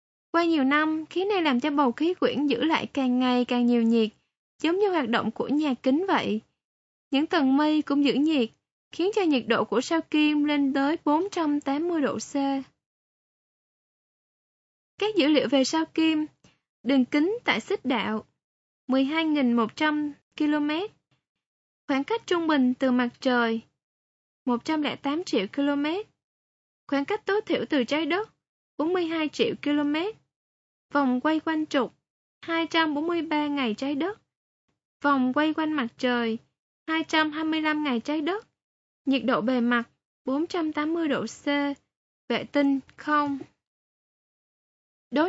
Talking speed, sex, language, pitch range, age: 140 wpm, female, Vietnamese, 270-325 Hz, 10-29